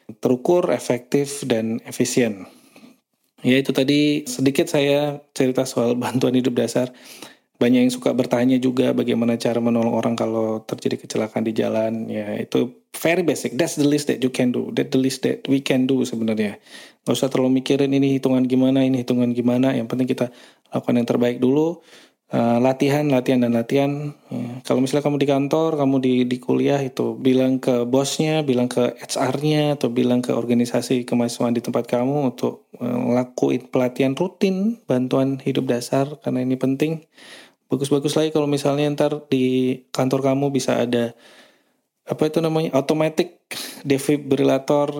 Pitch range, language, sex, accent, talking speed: 120-140 Hz, English, male, Indonesian, 155 wpm